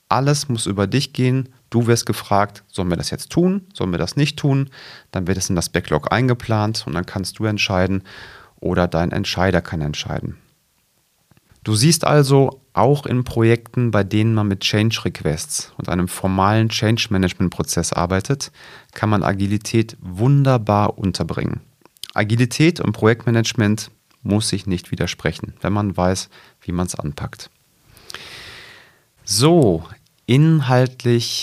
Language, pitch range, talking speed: German, 95-125 Hz, 145 wpm